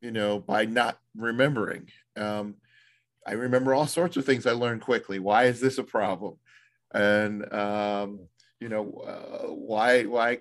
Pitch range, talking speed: 105-135 Hz, 155 wpm